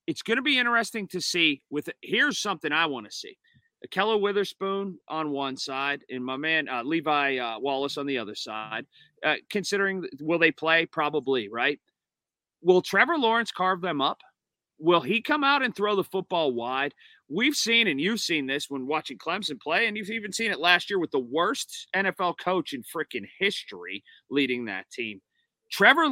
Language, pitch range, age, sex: English, 140-200 Hz, 40-59, male